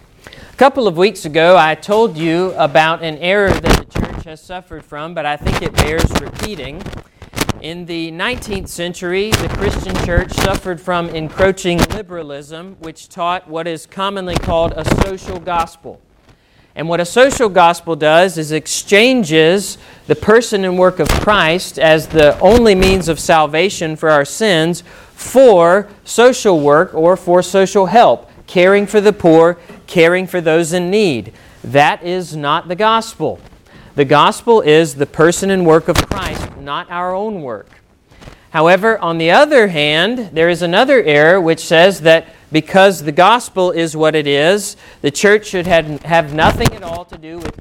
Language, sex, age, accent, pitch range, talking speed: English, male, 40-59, American, 155-190 Hz, 165 wpm